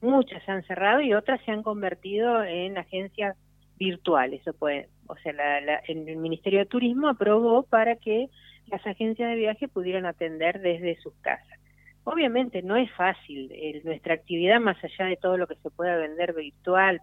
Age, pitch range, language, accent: 40-59, 165-215 Hz, Spanish, Argentinian